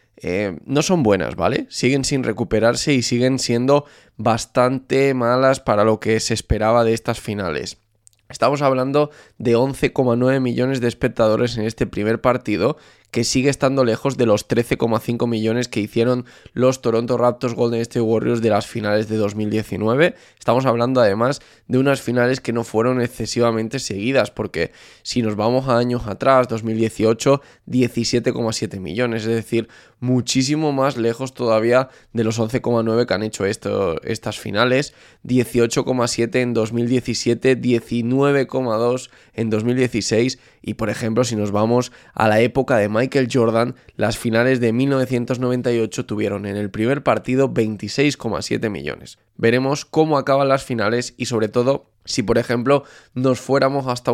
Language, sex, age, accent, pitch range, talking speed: Spanish, male, 20-39, Spanish, 110-130 Hz, 145 wpm